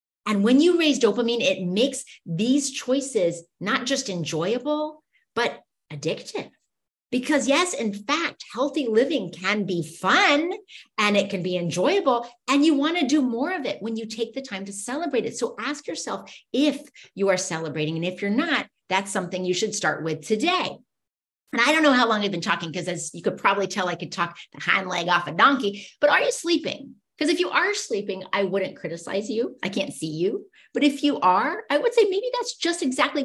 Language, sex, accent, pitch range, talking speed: English, female, American, 190-290 Hz, 205 wpm